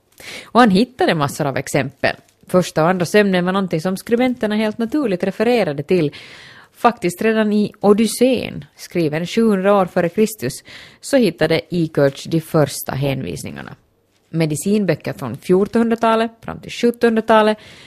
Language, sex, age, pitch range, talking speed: Swedish, female, 30-49, 160-220 Hz, 130 wpm